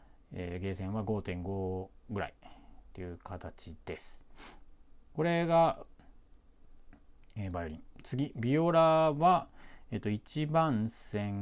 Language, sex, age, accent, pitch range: Japanese, male, 40-59, native, 90-140 Hz